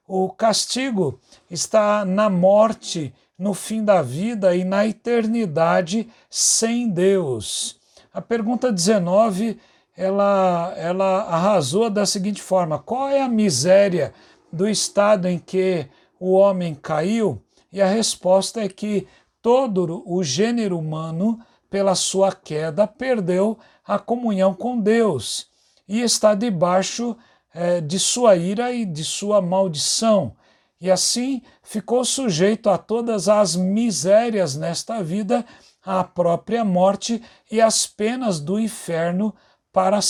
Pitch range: 175-220 Hz